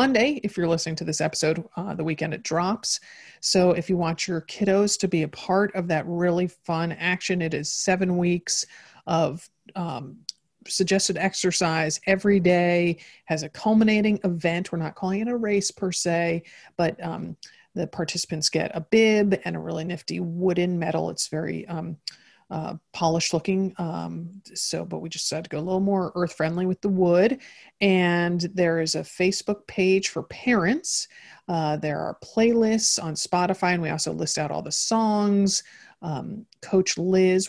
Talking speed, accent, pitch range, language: 175 wpm, American, 165-195 Hz, English